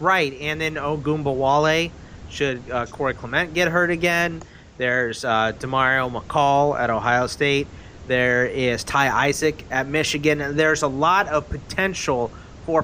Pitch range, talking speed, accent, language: 115-150 Hz, 150 wpm, American, English